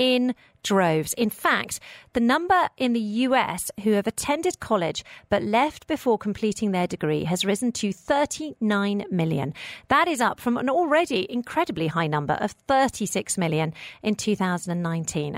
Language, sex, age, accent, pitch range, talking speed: English, female, 40-59, British, 175-245 Hz, 150 wpm